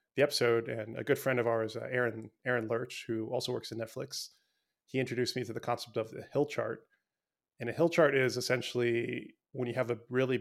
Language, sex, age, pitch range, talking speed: English, male, 20-39, 115-130 Hz, 220 wpm